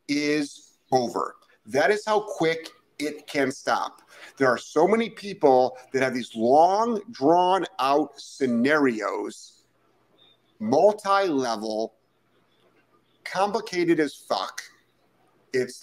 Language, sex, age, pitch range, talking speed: English, male, 50-69, 120-190 Hz, 100 wpm